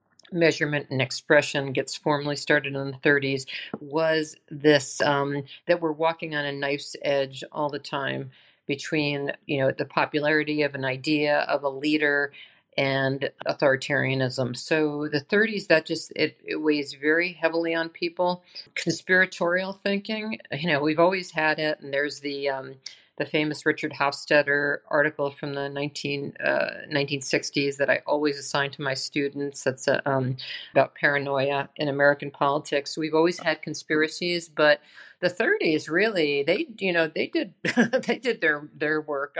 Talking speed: 155 wpm